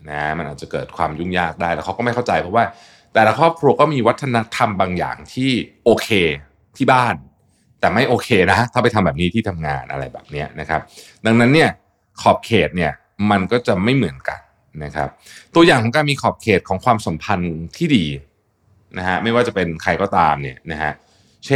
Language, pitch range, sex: Thai, 85-115 Hz, male